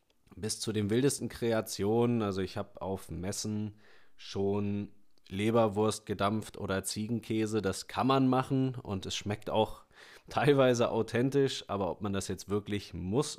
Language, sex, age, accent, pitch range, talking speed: German, male, 30-49, German, 95-120 Hz, 145 wpm